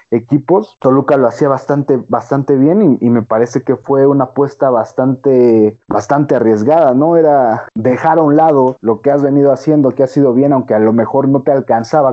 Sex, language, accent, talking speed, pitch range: male, Spanish, Mexican, 200 wpm, 115-140 Hz